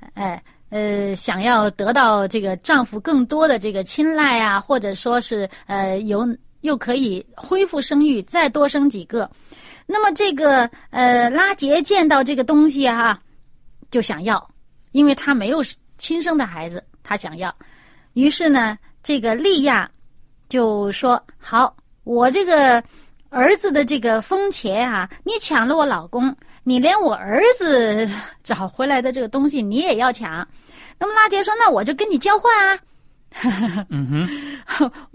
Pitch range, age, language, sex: 220-310 Hz, 30-49, Chinese, female